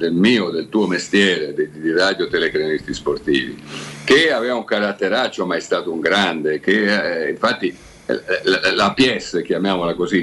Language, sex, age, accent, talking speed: Italian, male, 50-69, native, 165 wpm